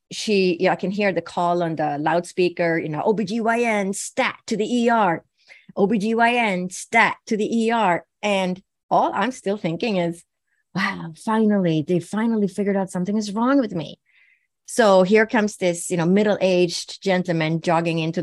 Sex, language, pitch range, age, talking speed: female, English, 165-205 Hz, 30-49, 165 wpm